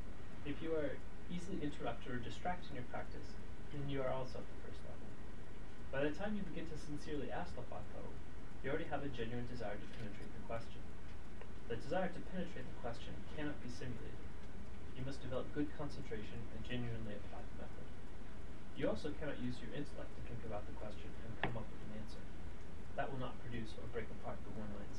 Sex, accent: male, American